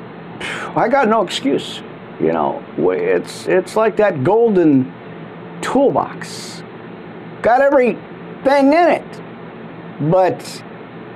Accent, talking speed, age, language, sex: American, 90 wpm, 50-69, English, male